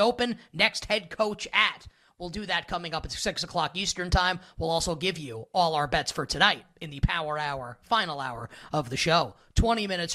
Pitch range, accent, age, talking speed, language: 155-195 Hz, American, 30-49, 205 wpm, English